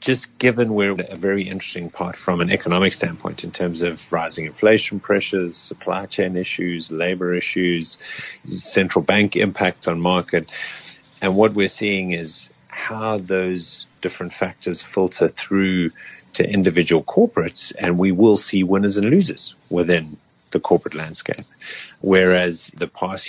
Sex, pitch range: male, 85-100 Hz